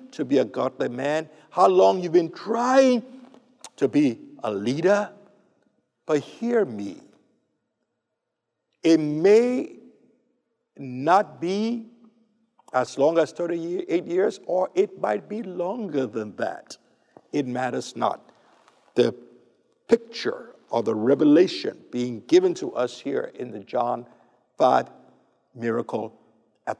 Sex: male